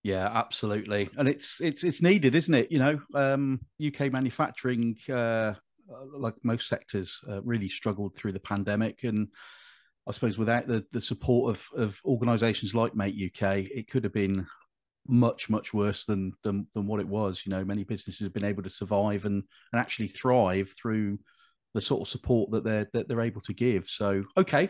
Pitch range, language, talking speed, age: 105-135 Hz, English, 185 wpm, 40-59